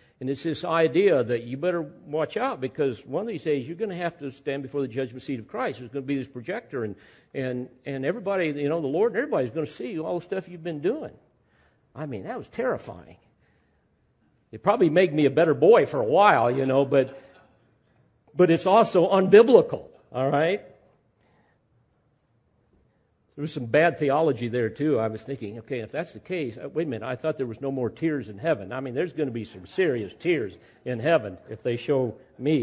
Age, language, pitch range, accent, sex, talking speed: 50-69, English, 130-170 Hz, American, male, 210 wpm